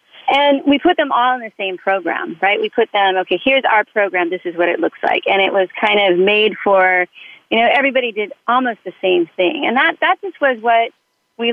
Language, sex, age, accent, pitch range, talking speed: English, female, 40-59, American, 190-255 Hz, 235 wpm